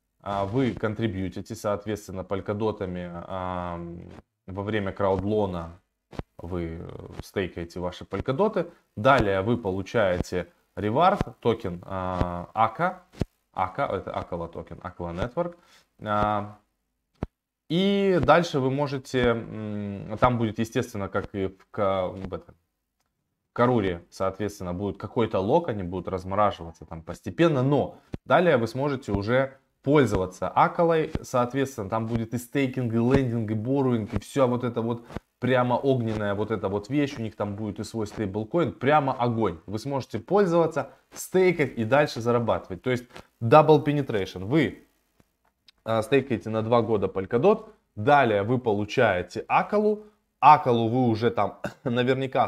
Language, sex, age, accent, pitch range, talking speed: Russian, male, 20-39, native, 95-130 Hz, 130 wpm